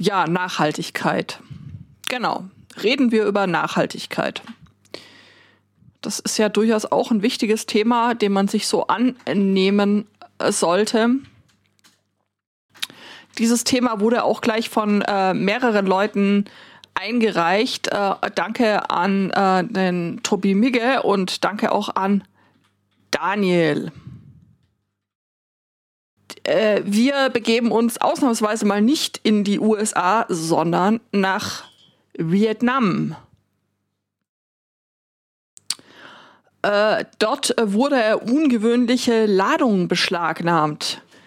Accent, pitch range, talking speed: German, 185-230 Hz, 90 wpm